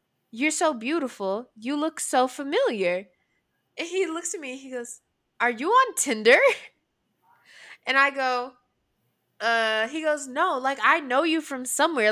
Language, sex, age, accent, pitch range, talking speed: English, female, 10-29, American, 210-275 Hz, 155 wpm